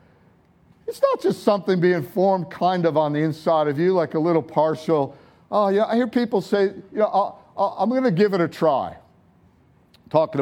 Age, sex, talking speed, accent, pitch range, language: 50-69, male, 200 wpm, American, 145-215 Hz, English